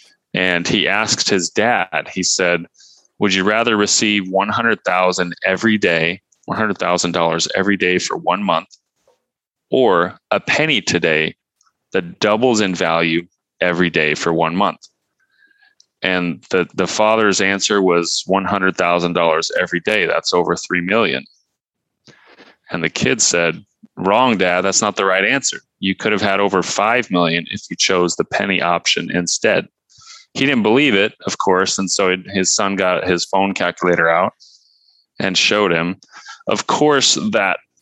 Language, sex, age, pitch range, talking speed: English, male, 30-49, 85-105 Hz, 145 wpm